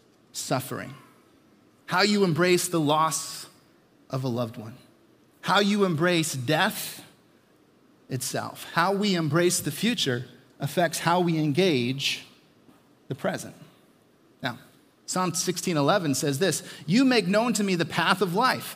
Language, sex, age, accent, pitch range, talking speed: English, male, 30-49, American, 145-185 Hz, 130 wpm